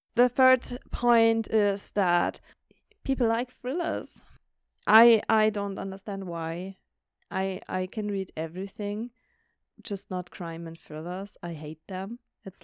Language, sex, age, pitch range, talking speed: English, female, 20-39, 185-215 Hz, 130 wpm